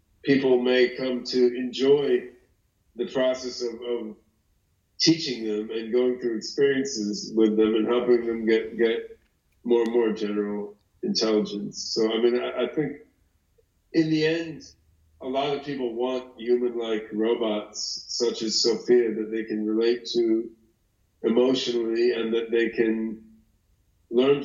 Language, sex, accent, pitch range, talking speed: English, male, American, 110-125 Hz, 140 wpm